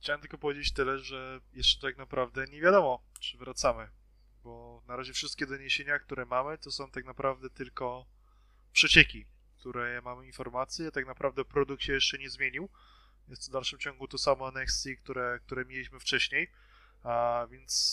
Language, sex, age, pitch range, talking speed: Polish, male, 20-39, 130-145 Hz, 160 wpm